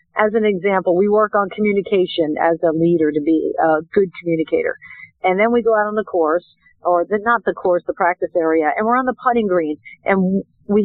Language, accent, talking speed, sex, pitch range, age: English, American, 210 wpm, female, 180-230 Hz, 50-69